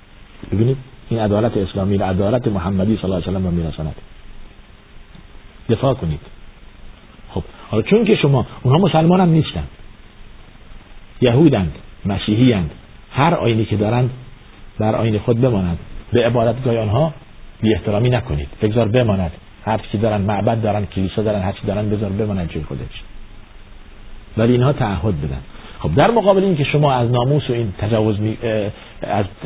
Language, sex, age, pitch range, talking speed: Persian, male, 50-69, 100-130 Hz, 145 wpm